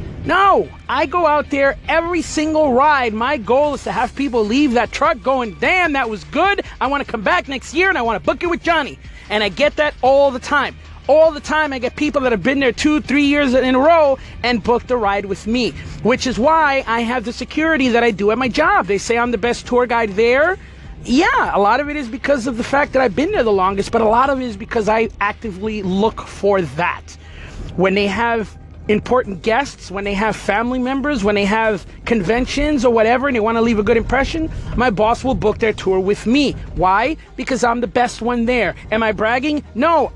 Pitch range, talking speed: 220-280 Hz, 235 wpm